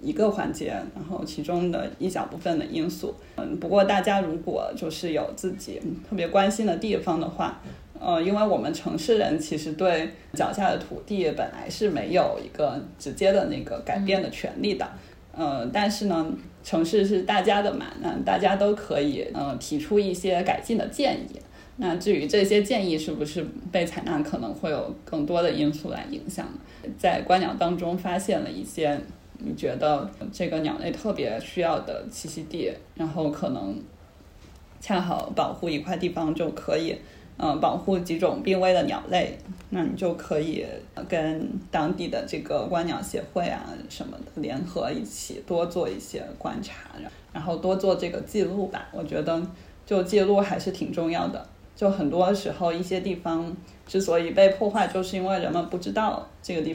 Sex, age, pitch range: female, 10-29, 165-200 Hz